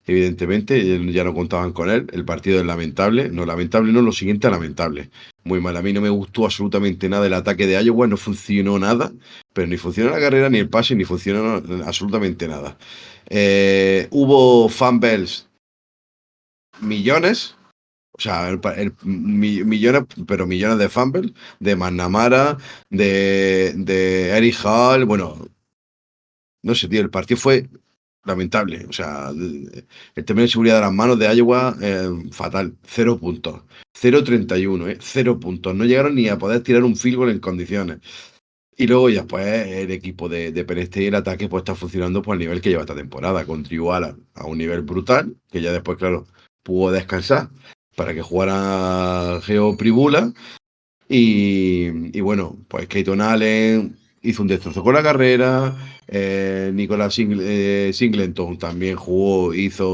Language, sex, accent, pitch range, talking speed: Spanish, male, Spanish, 90-120 Hz, 160 wpm